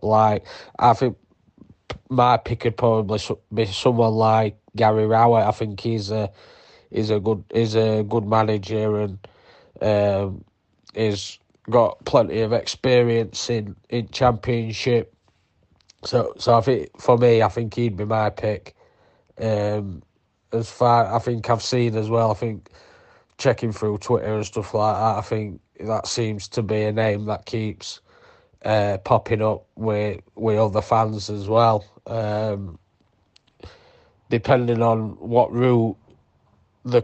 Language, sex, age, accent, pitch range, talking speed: English, male, 20-39, British, 105-115 Hz, 145 wpm